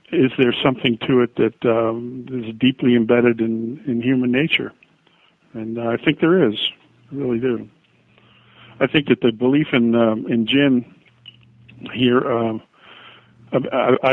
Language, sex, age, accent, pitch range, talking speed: English, male, 50-69, American, 115-130 Hz, 145 wpm